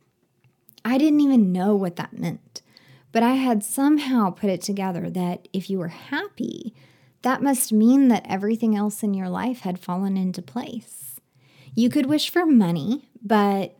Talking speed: 165 wpm